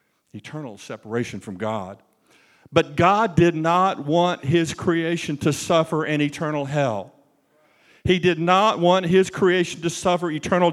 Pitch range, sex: 145-185 Hz, male